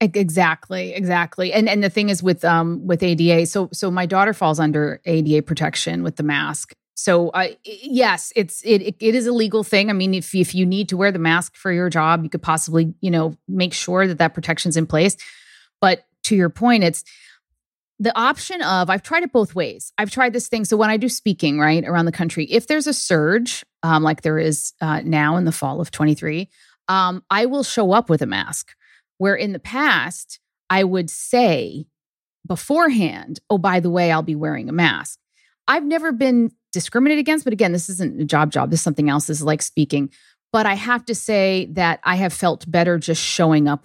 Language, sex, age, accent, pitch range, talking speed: English, female, 30-49, American, 165-210 Hz, 215 wpm